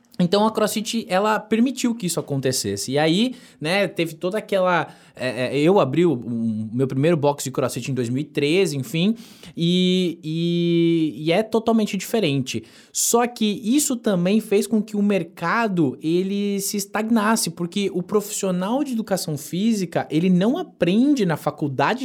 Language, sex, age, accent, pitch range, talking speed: Portuguese, male, 20-39, Brazilian, 150-210 Hz, 145 wpm